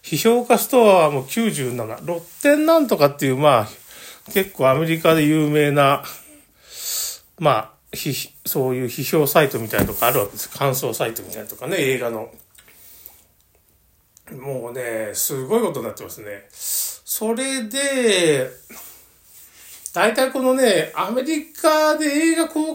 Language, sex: Japanese, male